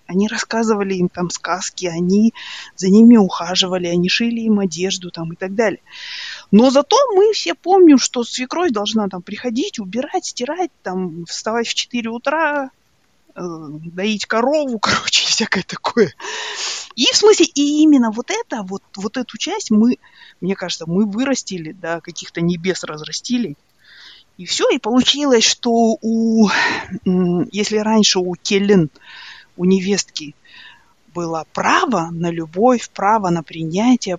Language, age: Russian, 30-49